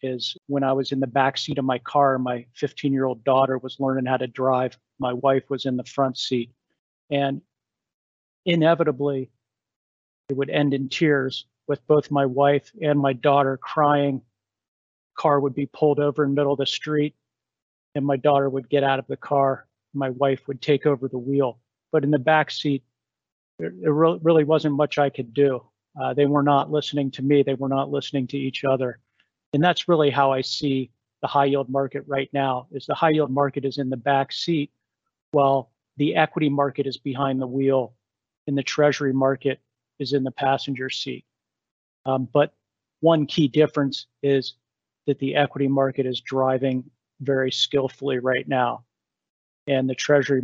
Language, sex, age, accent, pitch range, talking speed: English, male, 40-59, American, 130-145 Hz, 180 wpm